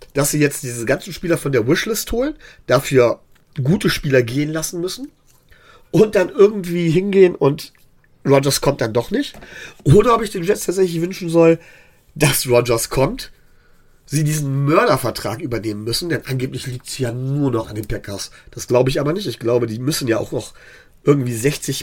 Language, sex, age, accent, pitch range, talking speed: German, male, 40-59, German, 125-165 Hz, 180 wpm